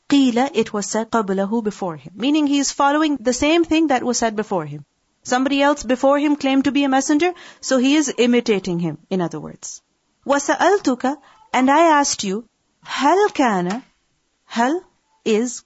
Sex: female